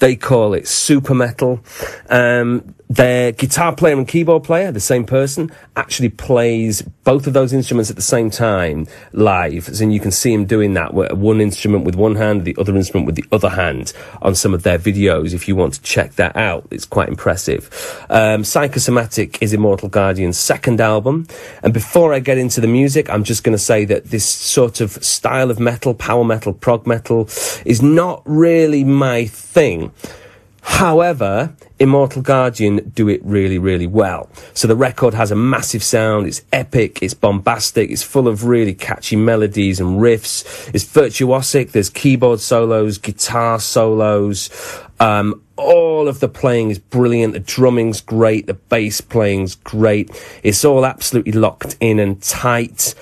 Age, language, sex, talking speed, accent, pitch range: 30-49, English, male, 170 wpm, British, 105-125 Hz